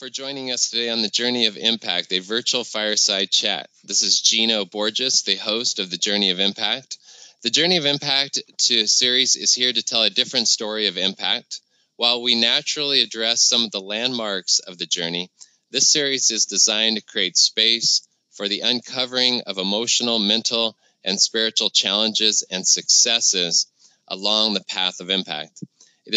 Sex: male